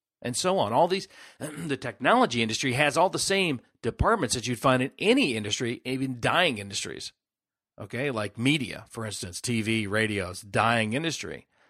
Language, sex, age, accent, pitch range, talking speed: English, male, 40-59, American, 105-155 Hz, 160 wpm